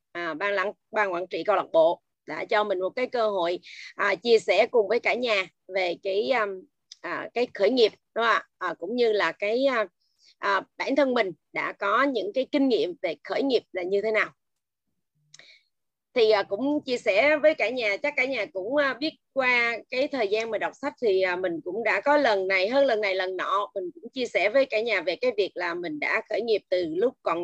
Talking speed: 220 wpm